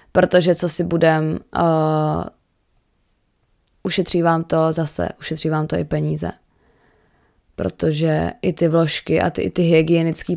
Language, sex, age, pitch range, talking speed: Czech, female, 20-39, 155-170 Hz, 120 wpm